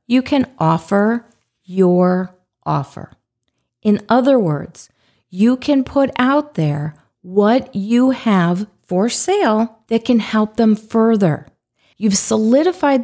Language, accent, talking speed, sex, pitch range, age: English, American, 115 wpm, female, 180-240 Hz, 40-59